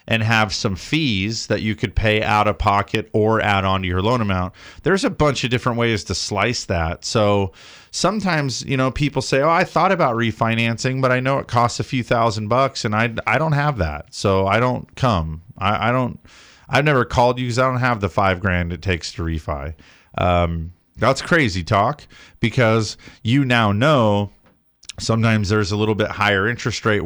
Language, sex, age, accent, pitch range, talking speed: English, male, 30-49, American, 95-120 Hz, 200 wpm